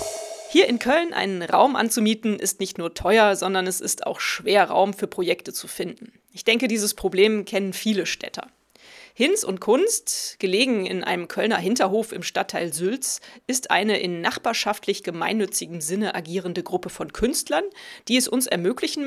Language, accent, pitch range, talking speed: German, German, 195-265 Hz, 165 wpm